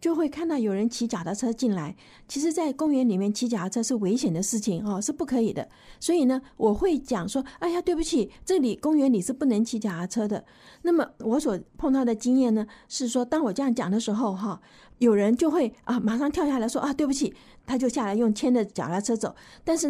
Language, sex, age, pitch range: Chinese, female, 50-69, 220-280 Hz